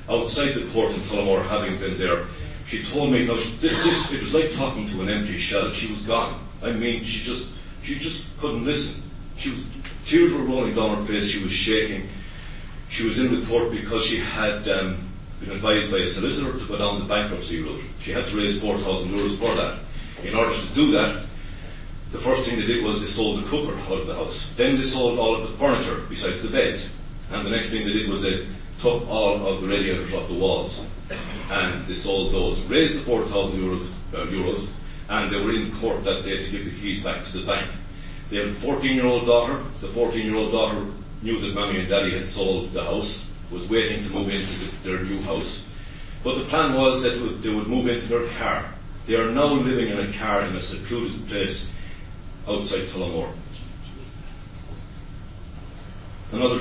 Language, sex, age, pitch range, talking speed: English, male, 40-59, 95-115 Hz, 210 wpm